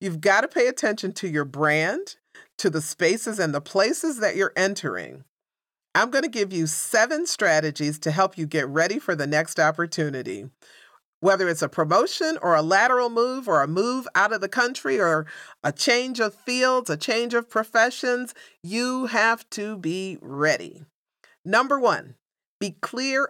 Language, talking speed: English, 170 wpm